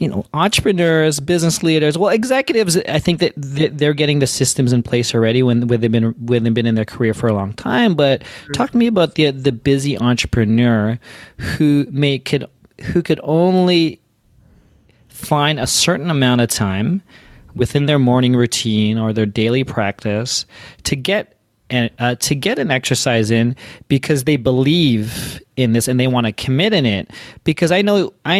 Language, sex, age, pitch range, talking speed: English, male, 30-49, 115-155 Hz, 180 wpm